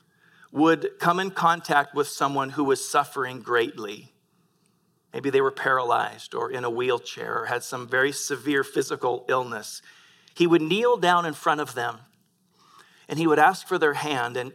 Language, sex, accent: English, male, American